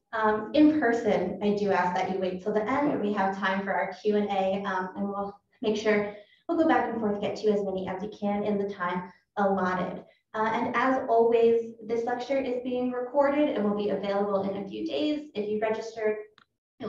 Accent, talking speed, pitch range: American, 215 wpm, 195-250 Hz